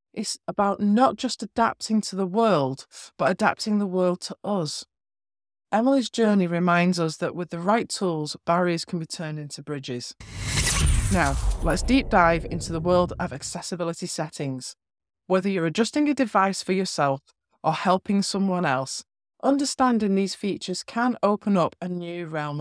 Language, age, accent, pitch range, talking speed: English, 20-39, British, 160-215 Hz, 155 wpm